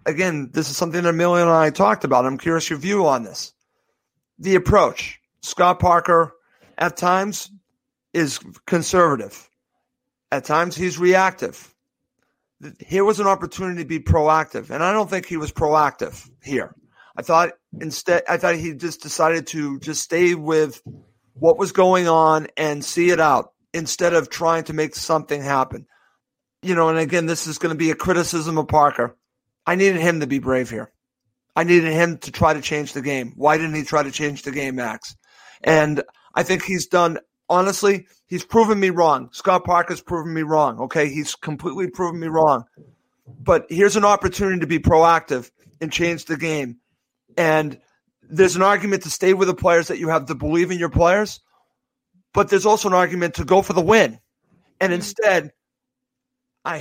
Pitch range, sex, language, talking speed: 155-180 Hz, male, English, 180 wpm